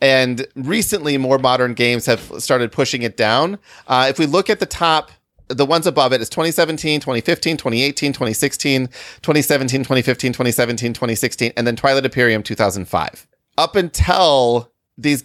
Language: English